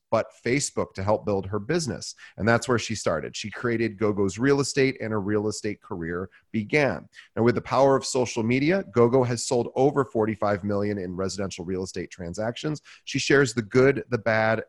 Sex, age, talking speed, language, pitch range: male, 30-49, 190 wpm, English, 105-125 Hz